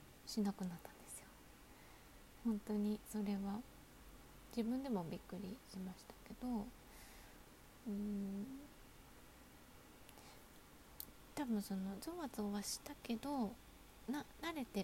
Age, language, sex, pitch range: 20-39, Japanese, female, 195-240 Hz